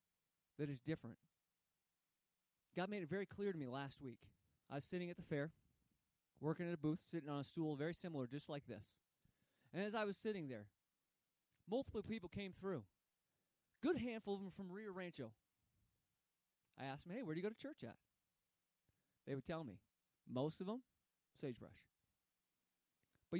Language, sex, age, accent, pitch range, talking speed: English, male, 30-49, American, 130-190 Hz, 175 wpm